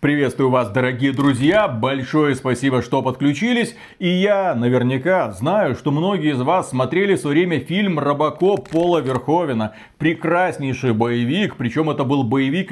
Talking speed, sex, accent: 135 wpm, male, native